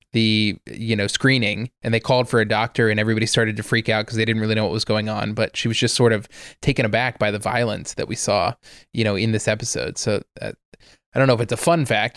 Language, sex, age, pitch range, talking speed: English, male, 20-39, 110-125 Hz, 265 wpm